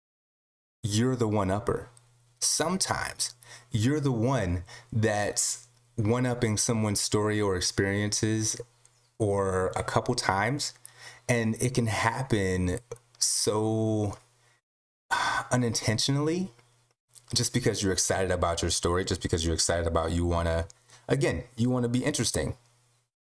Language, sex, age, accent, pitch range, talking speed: English, male, 30-49, American, 95-125 Hz, 115 wpm